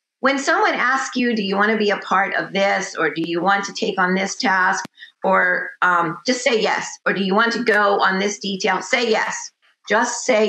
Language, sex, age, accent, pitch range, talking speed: English, female, 50-69, American, 185-240 Hz, 230 wpm